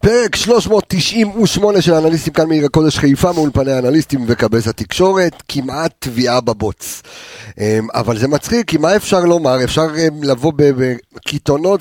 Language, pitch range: Hebrew, 115-165 Hz